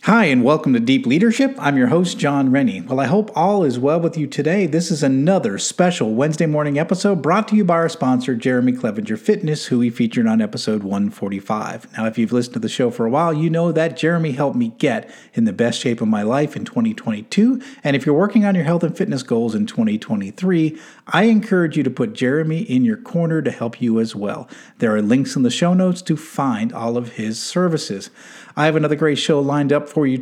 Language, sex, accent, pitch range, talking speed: English, male, American, 130-200 Hz, 230 wpm